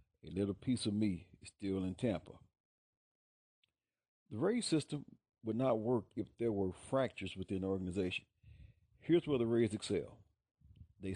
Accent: American